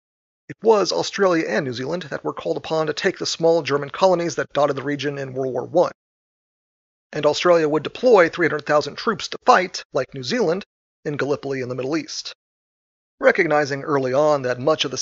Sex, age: male, 40-59